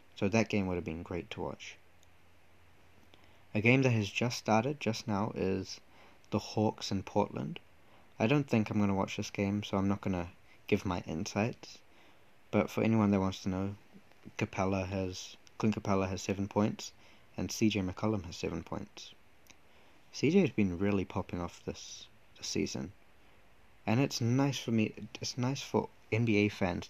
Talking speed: 175 wpm